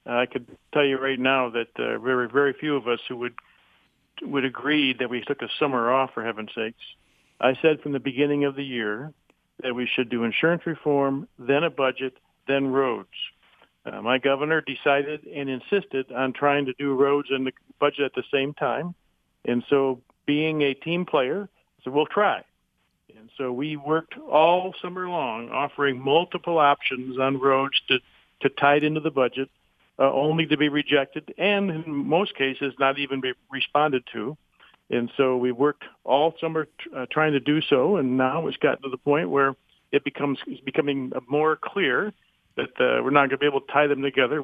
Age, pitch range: 60-79, 130-150 Hz